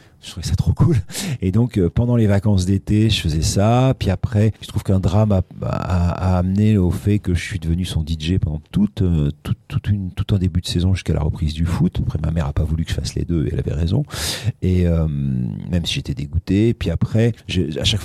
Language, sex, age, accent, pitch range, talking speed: French, male, 40-59, French, 85-105 Hz, 250 wpm